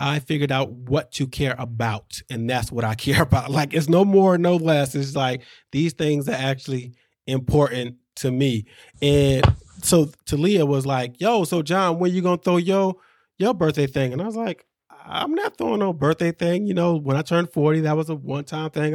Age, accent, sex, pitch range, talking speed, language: 20-39, American, male, 135-170 Hz, 215 wpm, English